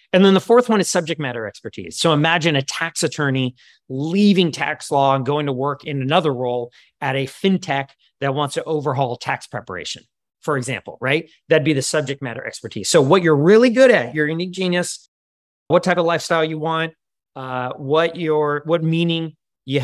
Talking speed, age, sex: 190 wpm, 30-49, male